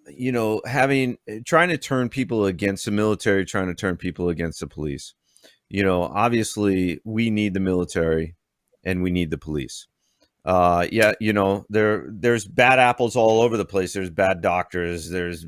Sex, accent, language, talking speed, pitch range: male, American, English, 175 wpm, 95-120 Hz